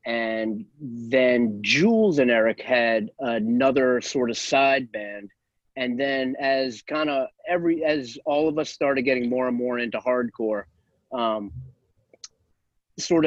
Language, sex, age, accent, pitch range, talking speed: English, male, 30-49, American, 110-135 Hz, 130 wpm